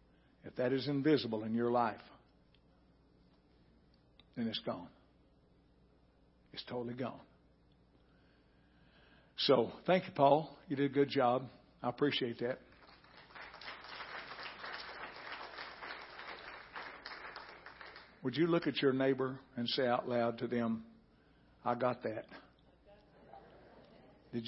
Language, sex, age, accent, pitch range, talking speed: English, male, 60-79, American, 90-130 Hz, 100 wpm